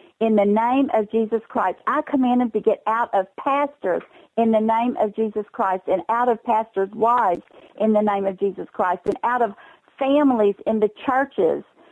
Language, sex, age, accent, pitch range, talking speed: English, female, 50-69, American, 195-230 Hz, 190 wpm